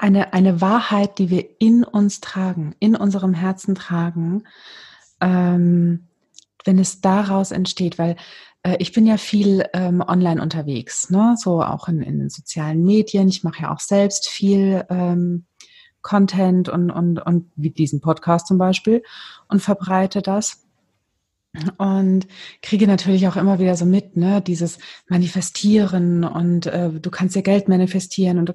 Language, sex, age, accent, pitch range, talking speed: German, female, 30-49, German, 165-195 Hz, 155 wpm